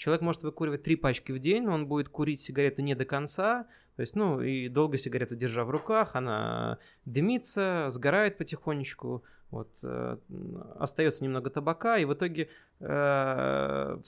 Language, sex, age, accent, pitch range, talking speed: Russian, male, 20-39, native, 120-155 Hz, 160 wpm